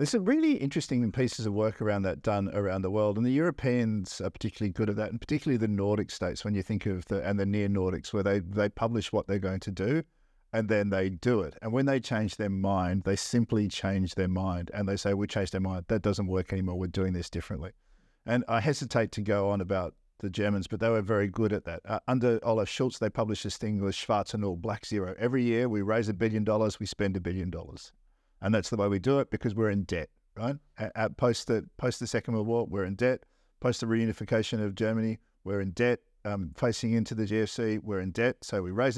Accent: Australian